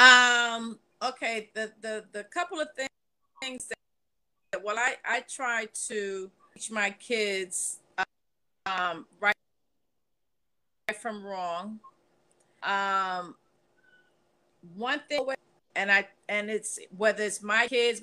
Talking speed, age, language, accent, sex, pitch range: 105 wpm, 40-59, English, American, female, 195-235 Hz